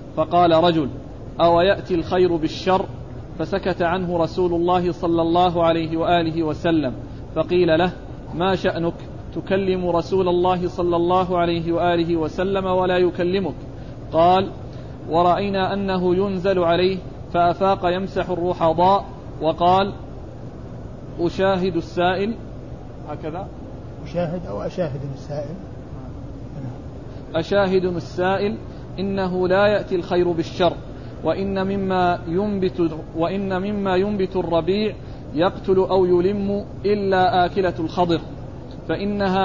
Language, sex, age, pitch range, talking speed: Arabic, male, 40-59, 160-190 Hz, 100 wpm